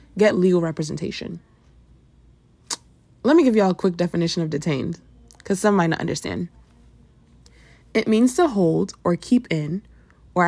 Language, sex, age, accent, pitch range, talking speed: English, female, 20-39, American, 160-210 Hz, 150 wpm